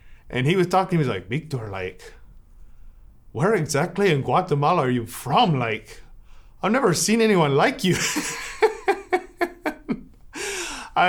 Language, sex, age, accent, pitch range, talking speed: English, male, 30-49, American, 110-150 Hz, 140 wpm